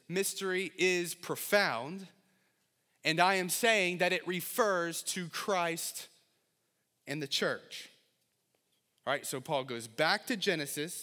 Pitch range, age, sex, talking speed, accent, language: 145-190 Hz, 30-49, male, 125 wpm, American, English